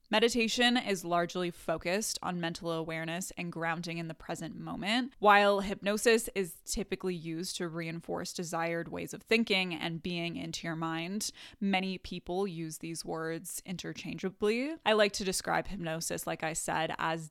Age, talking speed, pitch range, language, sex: 10-29, 155 wpm, 165-205 Hz, English, female